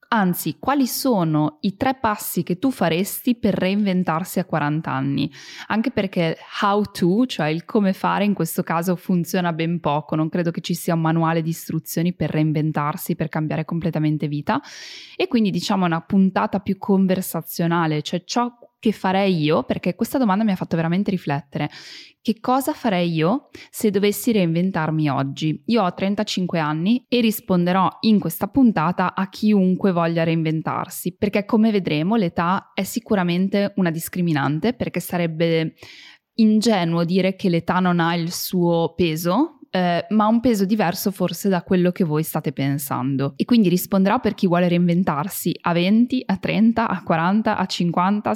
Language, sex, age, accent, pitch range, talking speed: Italian, female, 10-29, native, 165-210 Hz, 160 wpm